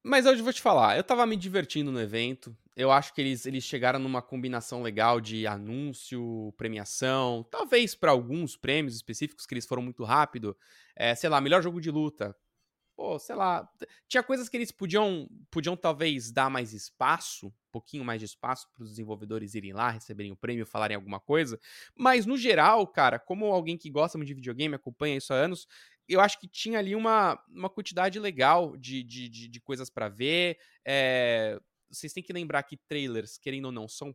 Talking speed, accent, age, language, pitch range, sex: 195 wpm, Brazilian, 20-39, Portuguese, 120-175 Hz, male